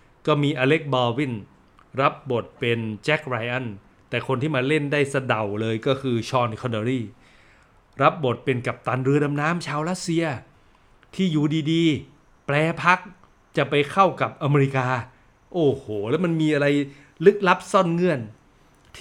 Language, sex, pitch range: Thai, male, 130-175 Hz